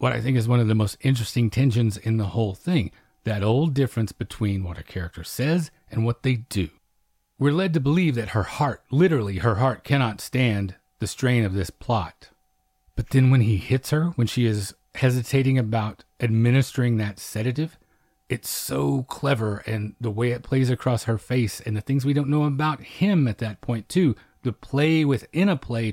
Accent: American